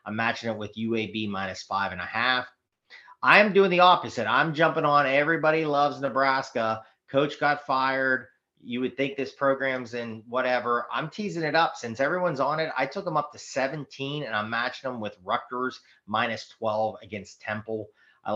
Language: English